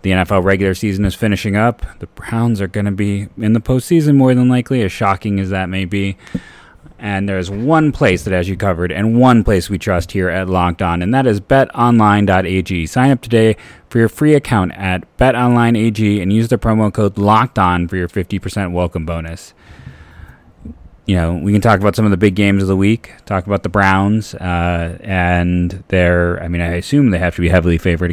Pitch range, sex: 90-105 Hz, male